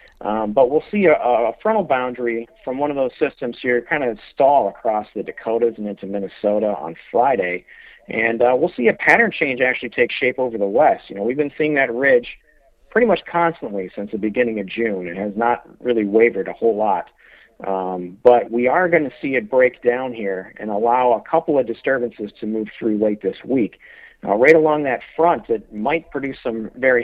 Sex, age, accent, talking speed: male, 40-59, American, 210 wpm